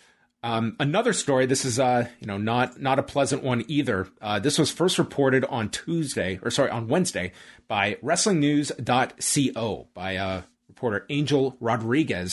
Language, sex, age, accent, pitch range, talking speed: English, male, 30-49, American, 110-150 Hz, 155 wpm